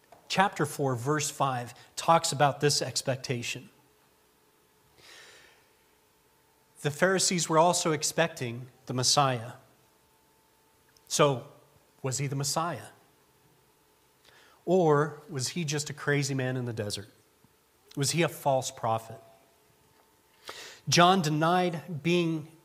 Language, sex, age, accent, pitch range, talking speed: English, male, 40-59, American, 135-175 Hz, 100 wpm